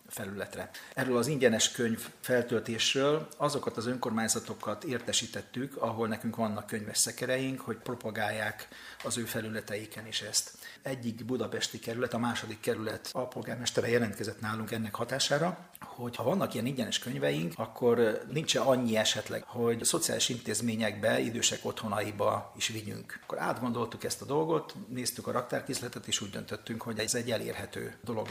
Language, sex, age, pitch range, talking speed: Hungarian, male, 40-59, 110-125 Hz, 140 wpm